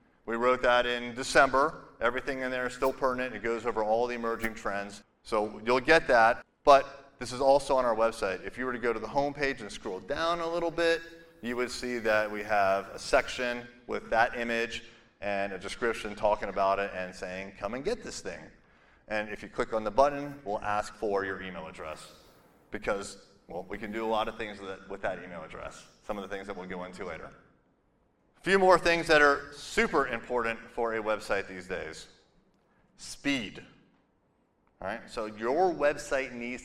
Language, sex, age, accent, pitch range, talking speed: English, male, 30-49, American, 105-135 Hz, 195 wpm